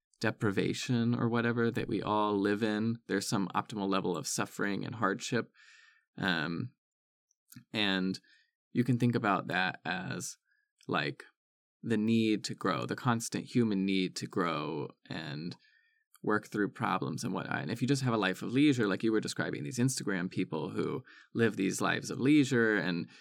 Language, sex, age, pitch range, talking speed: English, male, 20-39, 105-130 Hz, 165 wpm